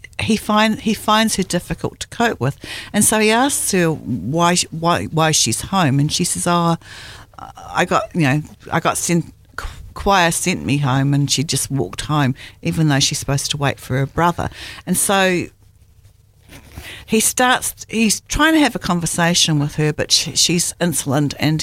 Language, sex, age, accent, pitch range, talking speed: English, female, 50-69, Australian, 130-170 Hz, 180 wpm